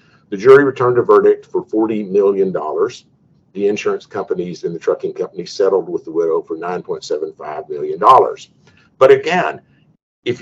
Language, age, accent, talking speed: English, 50-69, American, 175 wpm